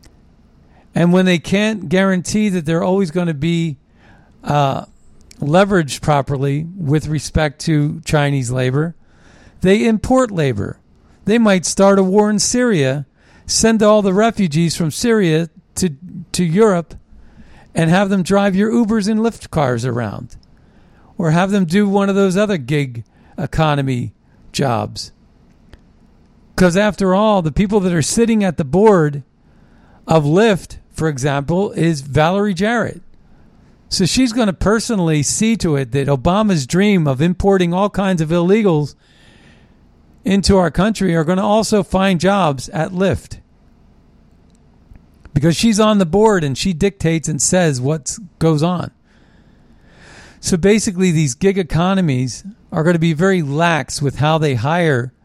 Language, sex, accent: English, male, American